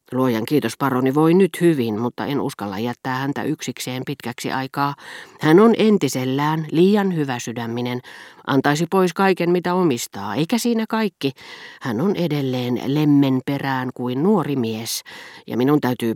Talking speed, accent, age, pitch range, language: 145 wpm, native, 40-59, 125-190 Hz, Finnish